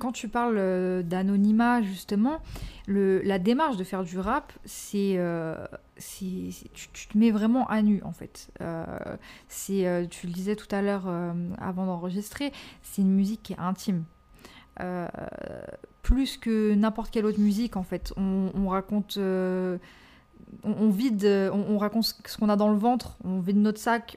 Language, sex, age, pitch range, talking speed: French, female, 20-39, 190-235 Hz, 175 wpm